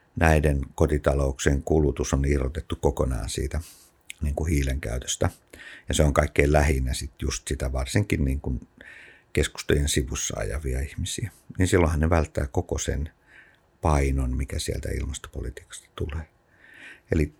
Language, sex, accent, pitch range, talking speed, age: Finnish, male, native, 70-85 Hz, 130 wpm, 50-69